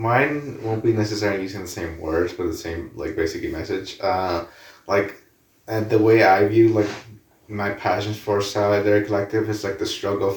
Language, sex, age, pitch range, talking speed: English, male, 30-49, 95-110 Hz, 180 wpm